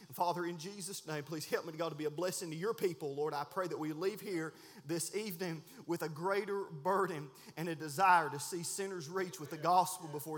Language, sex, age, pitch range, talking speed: English, male, 30-49, 175-225 Hz, 225 wpm